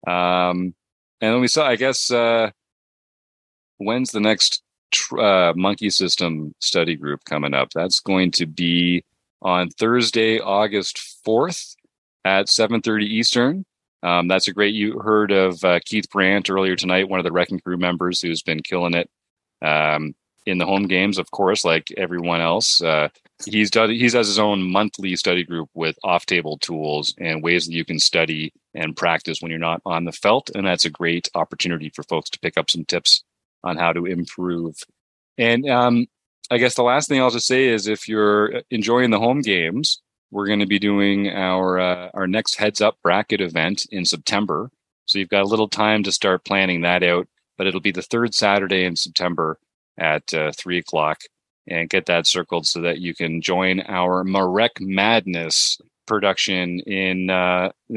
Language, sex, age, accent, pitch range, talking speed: English, male, 30-49, American, 85-105 Hz, 180 wpm